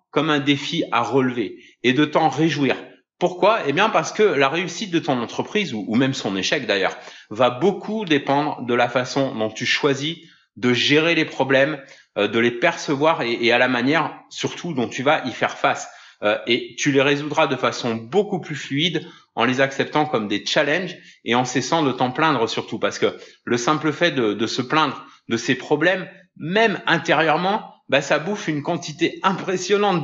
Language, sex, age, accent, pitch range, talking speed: French, male, 30-49, French, 135-175 Hz, 190 wpm